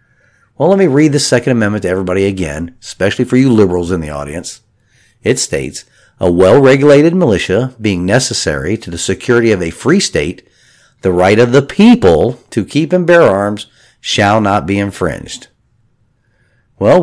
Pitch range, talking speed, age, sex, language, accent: 95-130 Hz, 160 wpm, 50-69, male, English, American